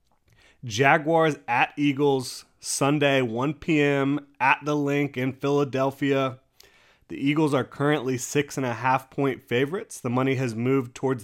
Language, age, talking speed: English, 30-49, 115 wpm